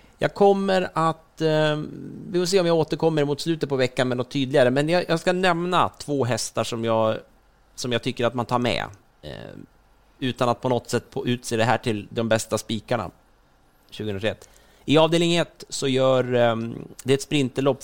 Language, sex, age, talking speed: Swedish, male, 30-49, 180 wpm